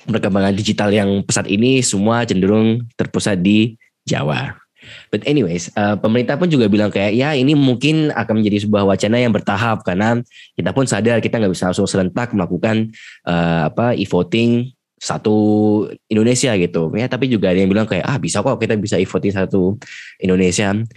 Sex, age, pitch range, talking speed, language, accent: male, 10-29, 95-120 Hz, 165 wpm, Indonesian, native